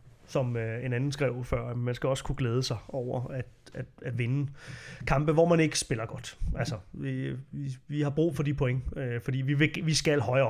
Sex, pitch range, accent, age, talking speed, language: male, 125-150 Hz, native, 30-49, 210 wpm, Danish